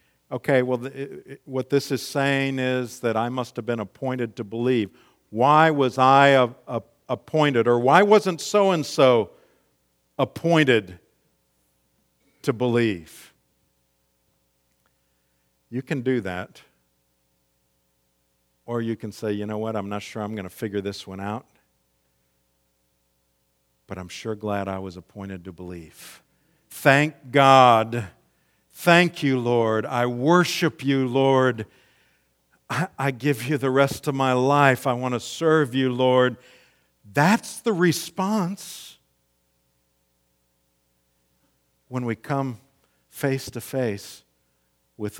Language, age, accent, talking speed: English, 50-69, American, 120 wpm